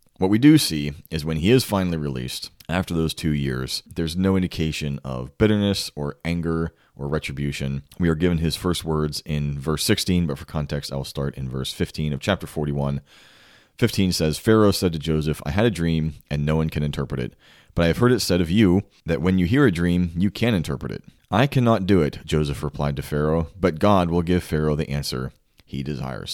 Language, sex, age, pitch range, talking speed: English, male, 30-49, 75-95 Hz, 215 wpm